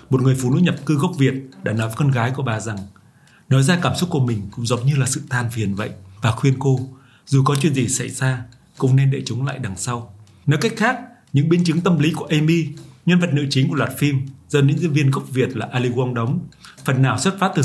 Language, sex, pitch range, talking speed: Vietnamese, male, 125-155 Hz, 265 wpm